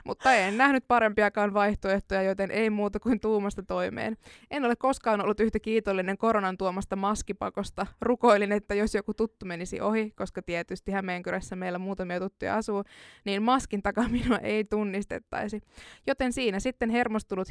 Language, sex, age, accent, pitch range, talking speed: Finnish, female, 20-39, native, 195-235 Hz, 145 wpm